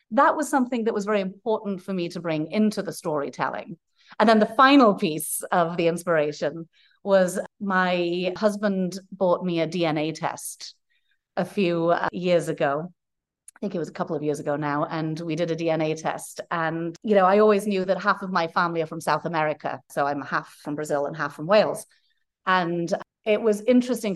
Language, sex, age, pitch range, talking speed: English, female, 30-49, 160-200 Hz, 195 wpm